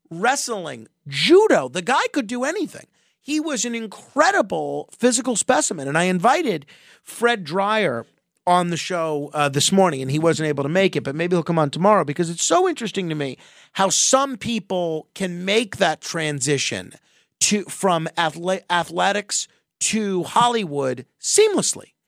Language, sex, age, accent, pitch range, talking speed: English, male, 40-59, American, 160-225 Hz, 155 wpm